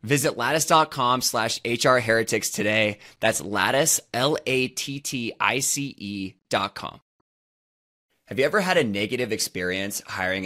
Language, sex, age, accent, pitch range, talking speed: English, male, 20-39, American, 100-135 Hz, 105 wpm